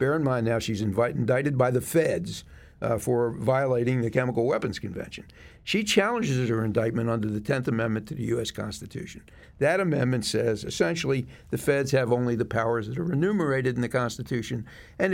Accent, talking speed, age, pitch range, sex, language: American, 180 wpm, 60-79, 115-155 Hz, male, English